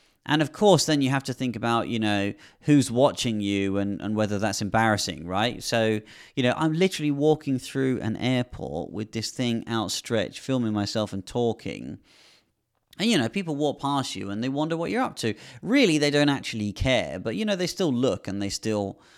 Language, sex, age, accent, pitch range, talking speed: English, male, 30-49, British, 105-135 Hz, 205 wpm